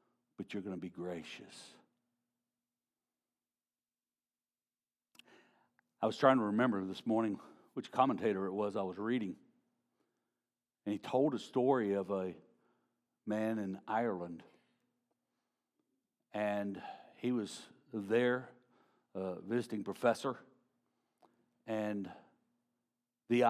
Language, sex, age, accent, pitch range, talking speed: English, male, 60-79, American, 100-120 Hz, 100 wpm